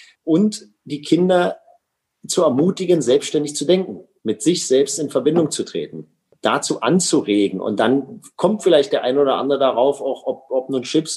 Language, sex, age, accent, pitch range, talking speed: German, male, 40-59, German, 120-180 Hz, 165 wpm